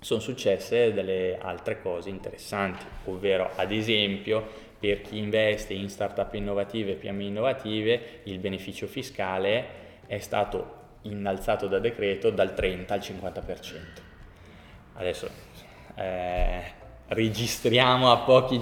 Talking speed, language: 115 wpm, Italian